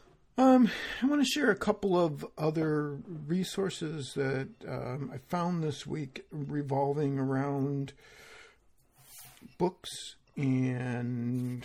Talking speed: 105 wpm